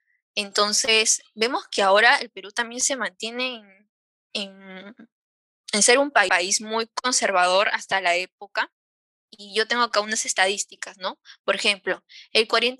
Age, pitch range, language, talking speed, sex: 10-29, 195-240 Hz, Spanish, 140 wpm, female